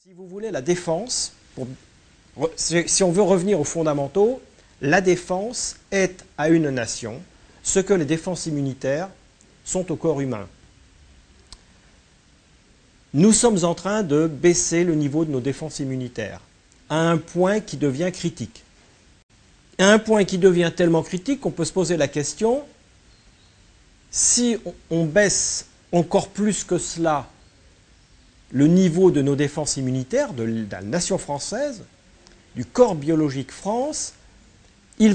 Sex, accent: male, French